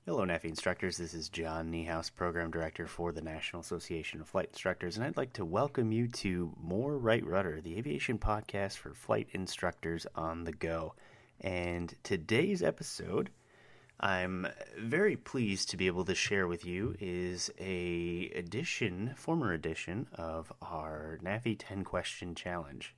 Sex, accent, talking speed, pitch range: male, American, 155 wpm, 85-115 Hz